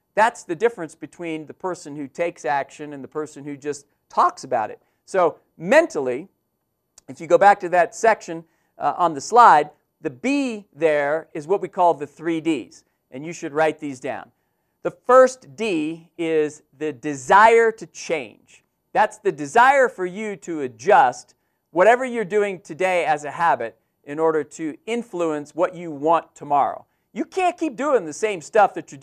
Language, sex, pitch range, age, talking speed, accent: English, male, 155-230 Hz, 40-59, 175 wpm, American